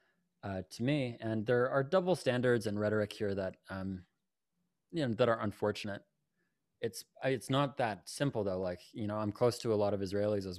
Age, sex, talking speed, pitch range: 20-39, male, 200 wpm, 100-120 Hz